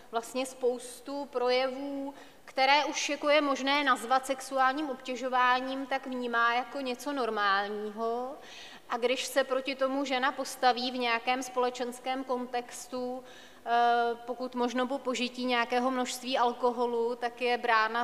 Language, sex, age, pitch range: Czech, female, 30-49, 220-250 Hz